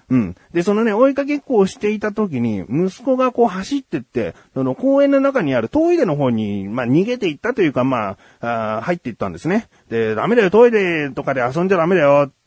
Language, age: Japanese, 30-49